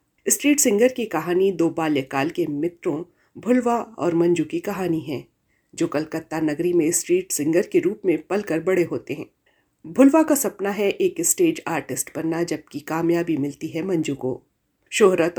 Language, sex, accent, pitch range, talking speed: Hindi, female, native, 155-225 Hz, 165 wpm